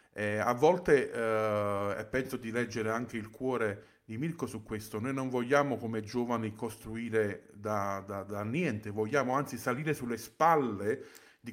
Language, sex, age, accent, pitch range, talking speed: Italian, male, 30-49, native, 110-130 Hz, 155 wpm